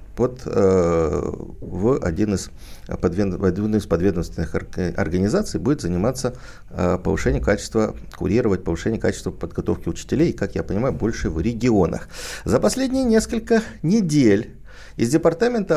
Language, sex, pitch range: Russian, male, 85-115 Hz